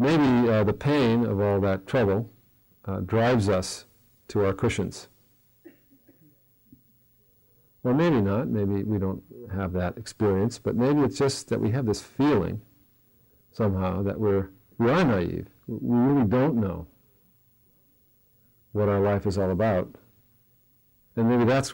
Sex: male